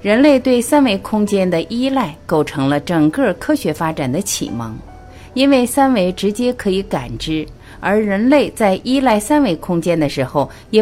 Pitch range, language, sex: 145-225 Hz, Chinese, female